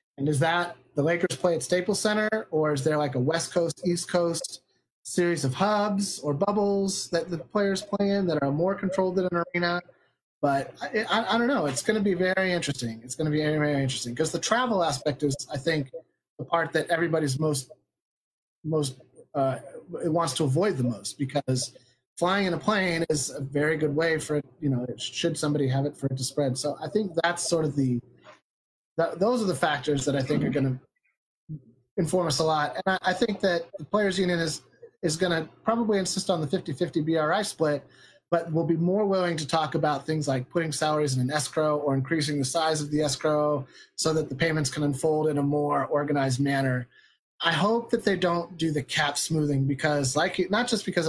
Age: 30-49